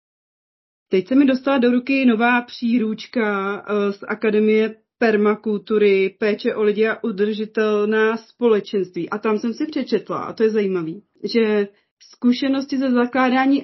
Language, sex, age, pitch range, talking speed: Czech, female, 30-49, 195-225 Hz, 130 wpm